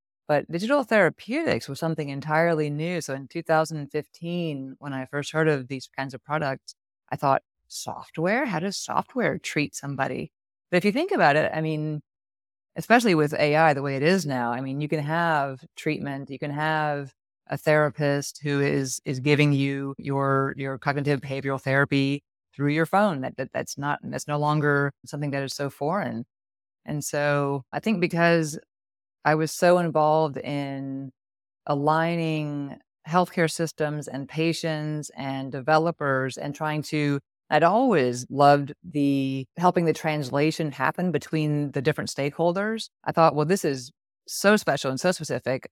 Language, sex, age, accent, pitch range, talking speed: English, female, 30-49, American, 135-160 Hz, 165 wpm